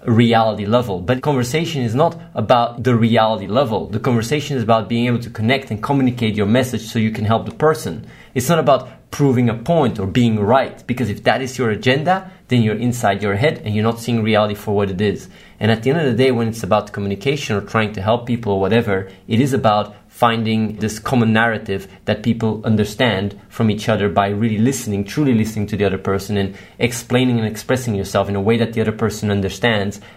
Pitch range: 105-125 Hz